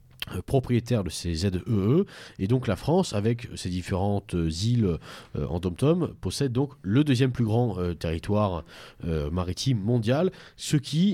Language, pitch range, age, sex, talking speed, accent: French, 100-140 Hz, 40-59, male, 150 wpm, French